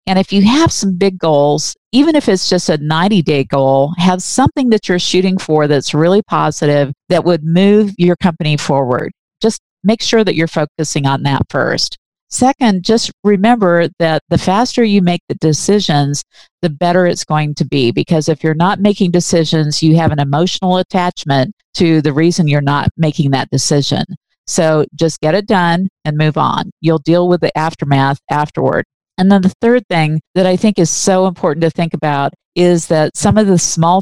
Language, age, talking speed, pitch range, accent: English, 50-69, 190 wpm, 155-190 Hz, American